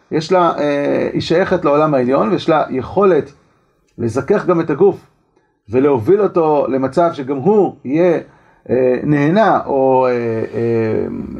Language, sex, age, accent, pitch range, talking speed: Hebrew, male, 50-69, native, 130-180 Hz, 125 wpm